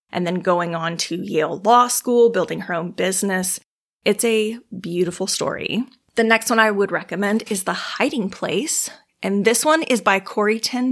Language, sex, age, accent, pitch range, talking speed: English, female, 30-49, American, 185-230 Hz, 180 wpm